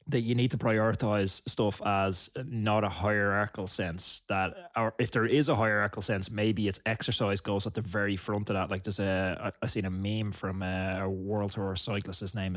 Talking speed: 200 wpm